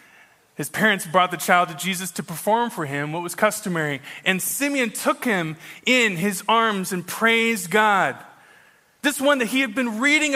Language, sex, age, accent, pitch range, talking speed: English, male, 20-39, American, 200-290 Hz, 180 wpm